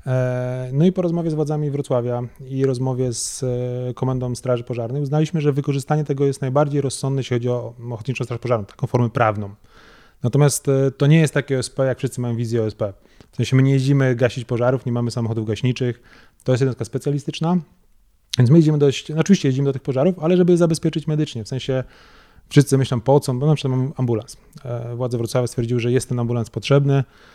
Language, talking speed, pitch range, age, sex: Polish, 190 wpm, 120-140 Hz, 20-39, male